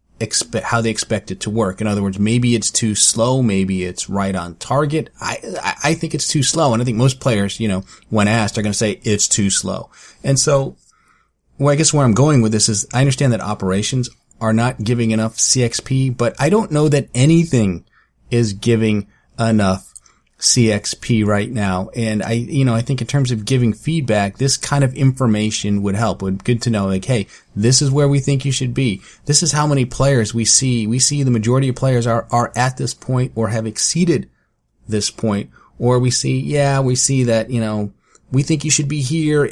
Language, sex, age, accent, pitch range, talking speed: English, male, 30-49, American, 105-135 Hz, 215 wpm